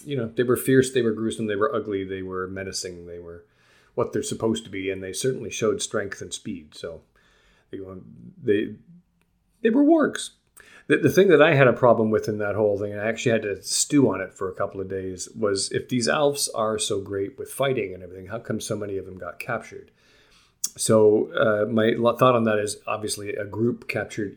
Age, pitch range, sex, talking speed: 40-59, 95-125 Hz, male, 225 wpm